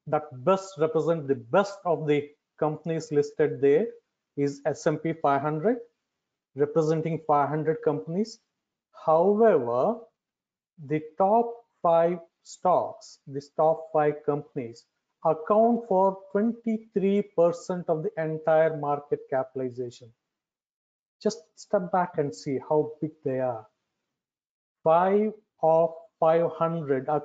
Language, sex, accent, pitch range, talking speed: English, male, Indian, 145-195 Hz, 100 wpm